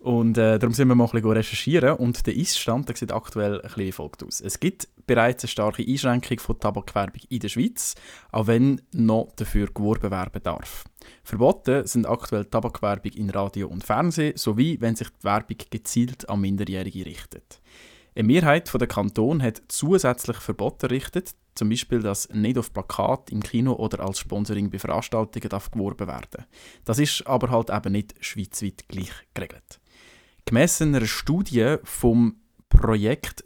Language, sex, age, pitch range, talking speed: German, male, 20-39, 105-125 Hz, 165 wpm